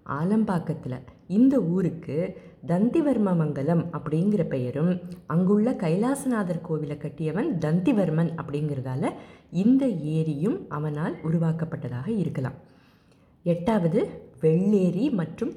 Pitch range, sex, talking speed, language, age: 155-210 Hz, female, 80 wpm, Tamil, 20-39